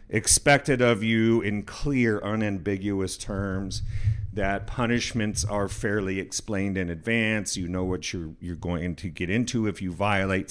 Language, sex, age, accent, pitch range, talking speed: English, male, 50-69, American, 95-120 Hz, 150 wpm